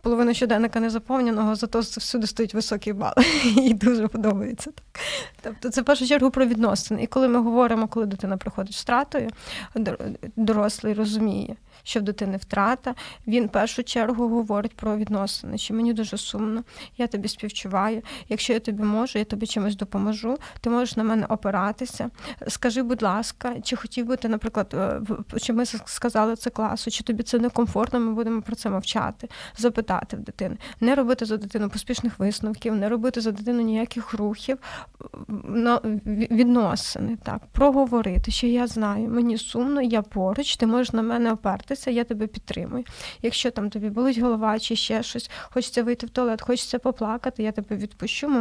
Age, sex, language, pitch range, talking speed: 20-39, female, Ukrainian, 215-245 Hz, 165 wpm